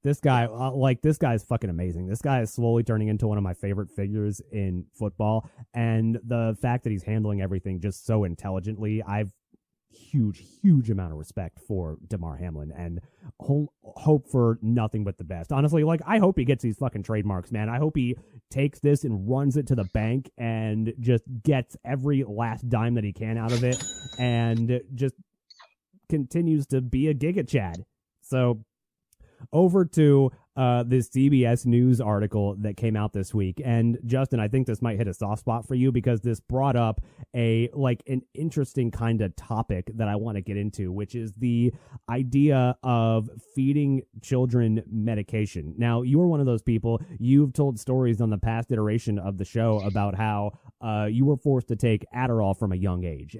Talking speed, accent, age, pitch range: 190 wpm, American, 30-49, 100-130 Hz